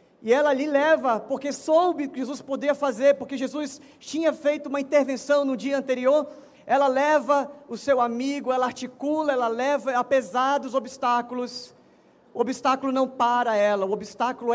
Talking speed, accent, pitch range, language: 155 wpm, Brazilian, 235-285 Hz, Portuguese